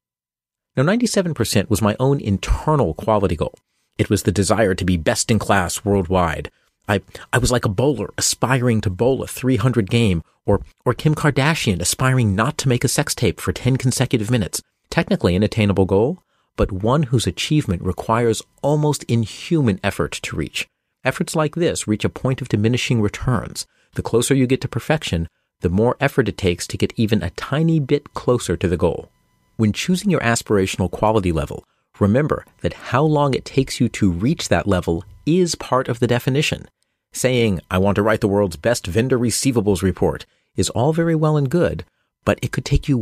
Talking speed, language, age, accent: 185 wpm, English, 40-59, American